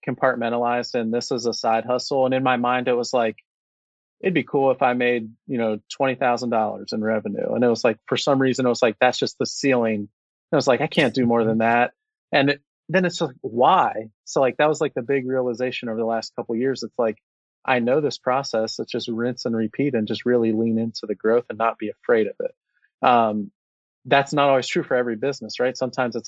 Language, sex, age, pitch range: English, male, 30-49, 110-130 Hz